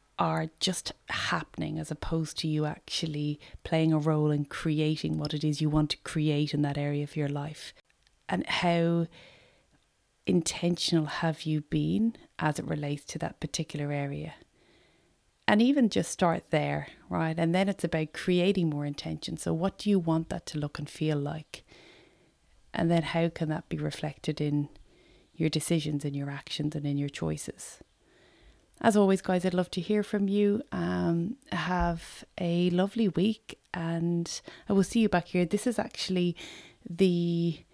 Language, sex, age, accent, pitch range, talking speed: English, female, 30-49, Irish, 155-175 Hz, 165 wpm